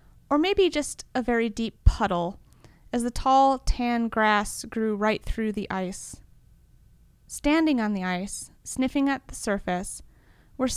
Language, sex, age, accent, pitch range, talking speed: English, female, 30-49, American, 210-265 Hz, 145 wpm